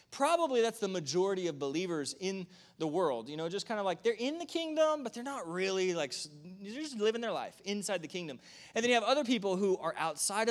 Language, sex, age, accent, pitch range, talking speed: English, male, 20-39, American, 160-215 Hz, 235 wpm